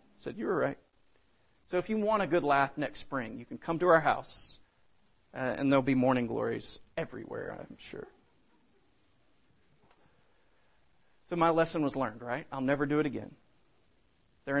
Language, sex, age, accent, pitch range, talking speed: English, male, 40-59, American, 130-180 Hz, 165 wpm